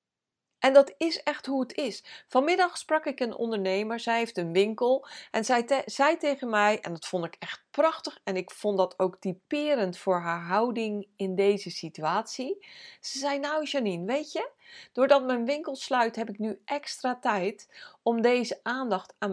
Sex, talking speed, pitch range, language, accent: female, 180 wpm, 200-275 Hz, Dutch, Dutch